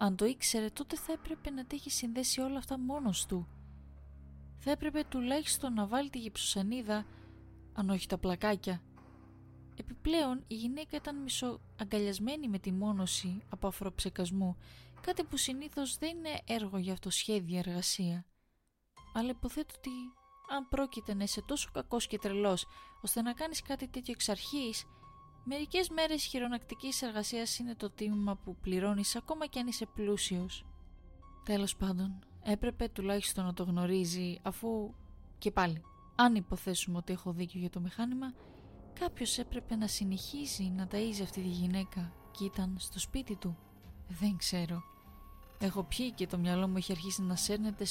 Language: Greek